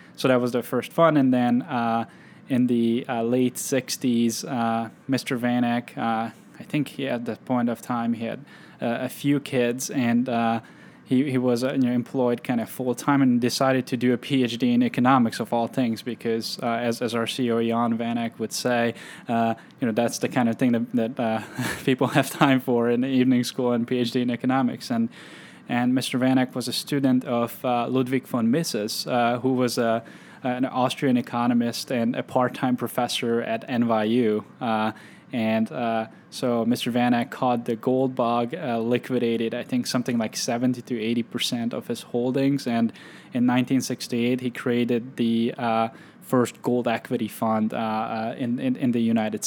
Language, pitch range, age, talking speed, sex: English, 115-130 Hz, 10-29, 185 wpm, male